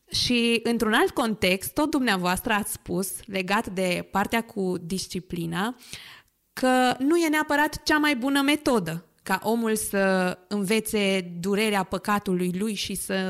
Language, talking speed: Romanian, 135 wpm